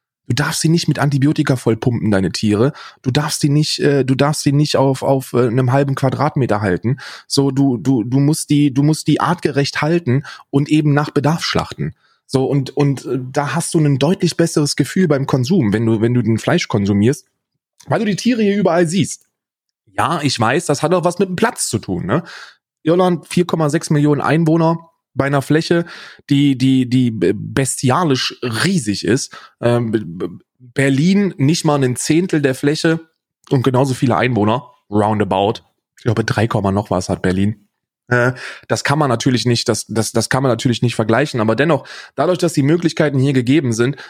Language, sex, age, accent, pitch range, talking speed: German, male, 20-39, German, 120-155 Hz, 180 wpm